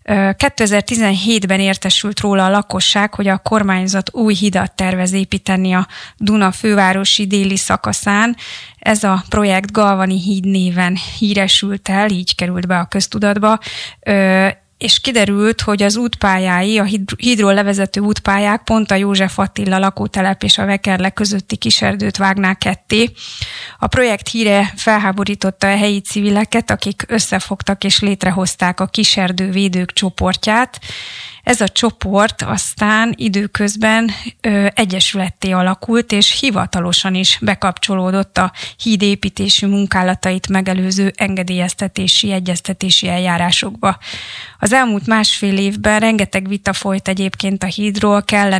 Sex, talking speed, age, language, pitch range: female, 120 wpm, 30-49, Hungarian, 190-210 Hz